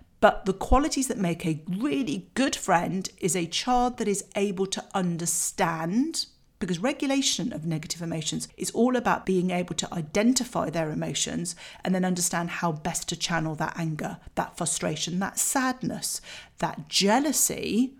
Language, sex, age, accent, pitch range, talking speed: English, female, 40-59, British, 170-215 Hz, 155 wpm